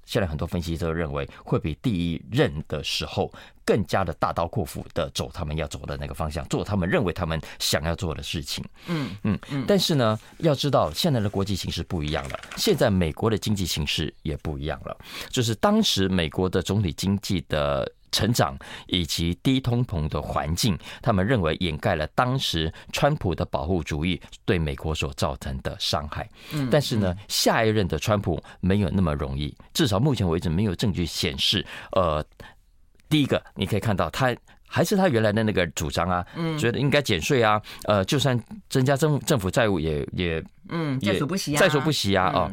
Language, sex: Chinese, male